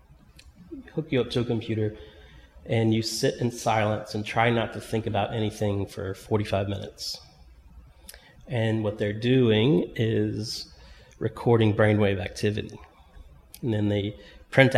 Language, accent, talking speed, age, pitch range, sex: English, American, 135 wpm, 30-49, 100-115 Hz, male